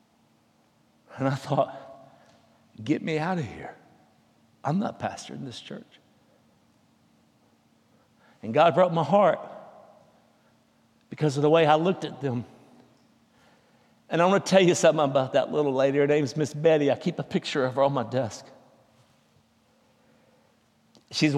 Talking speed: 150 wpm